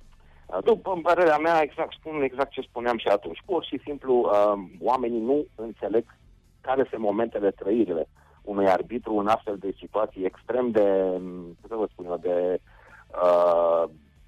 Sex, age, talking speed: male, 30-49, 145 wpm